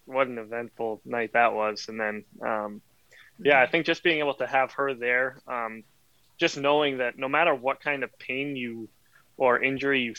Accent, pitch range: American, 115-135 Hz